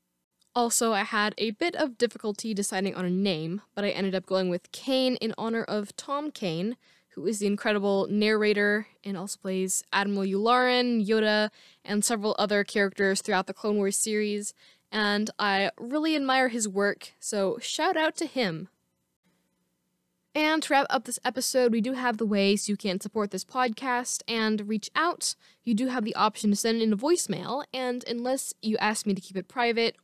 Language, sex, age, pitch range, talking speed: English, female, 10-29, 195-250 Hz, 185 wpm